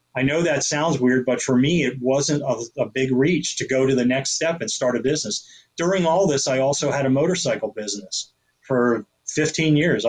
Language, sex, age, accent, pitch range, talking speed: English, male, 30-49, American, 120-145 Hz, 215 wpm